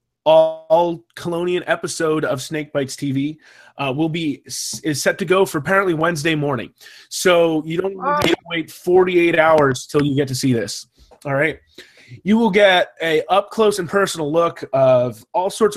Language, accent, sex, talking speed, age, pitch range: English, American, male, 175 wpm, 30-49, 140-170 Hz